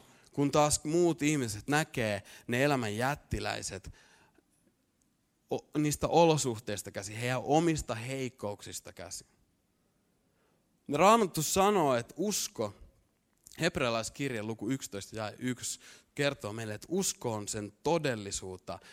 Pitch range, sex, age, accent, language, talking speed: 110-165 Hz, male, 30-49, native, Finnish, 100 wpm